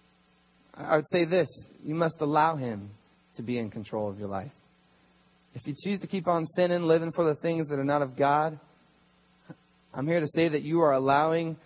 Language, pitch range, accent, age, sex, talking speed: English, 125-210 Hz, American, 30-49, male, 200 wpm